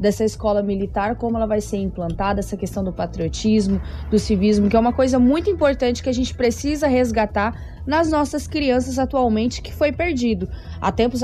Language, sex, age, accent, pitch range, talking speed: Portuguese, female, 20-39, Brazilian, 200-235 Hz, 180 wpm